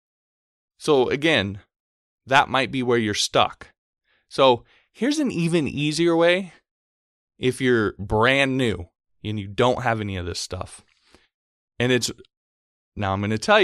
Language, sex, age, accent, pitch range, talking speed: English, male, 20-39, American, 100-135 Hz, 145 wpm